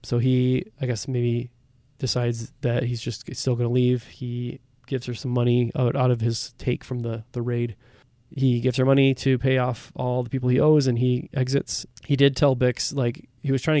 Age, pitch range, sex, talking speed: 20-39, 120-135 Hz, male, 215 wpm